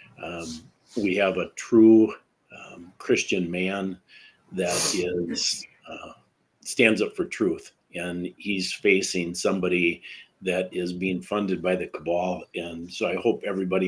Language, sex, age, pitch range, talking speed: English, male, 50-69, 90-105 Hz, 130 wpm